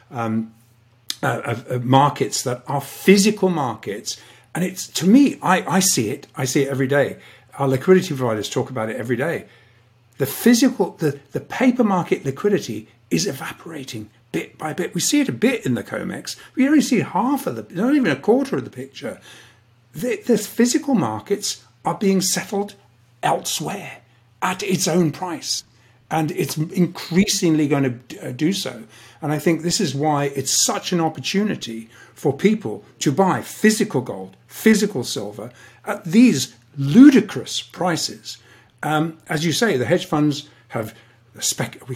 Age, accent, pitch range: 50-69, British, 130-195 Hz